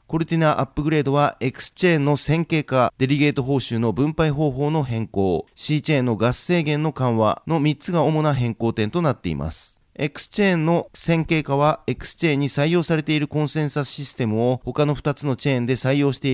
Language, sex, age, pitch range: Japanese, male, 40-59, 120-155 Hz